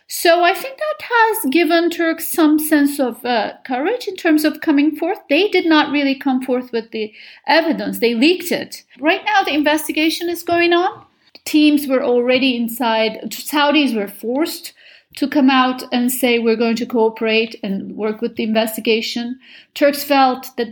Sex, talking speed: female, 175 wpm